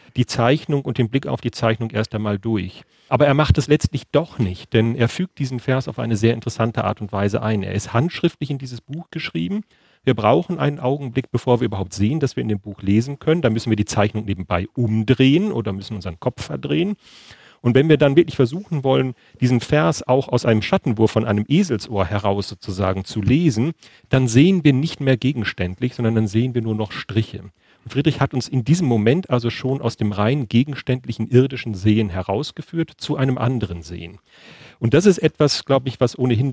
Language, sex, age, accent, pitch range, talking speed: German, male, 40-59, German, 110-145 Hz, 205 wpm